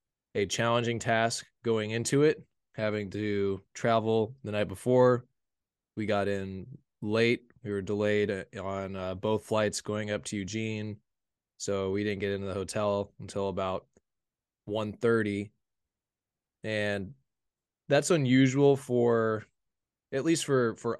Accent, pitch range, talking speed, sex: American, 100-115 Hz, 130 wpm, male